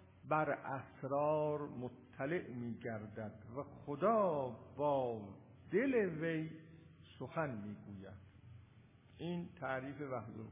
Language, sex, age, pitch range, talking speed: Persian, male, 50-69, 120-180 Hz, 75 wpm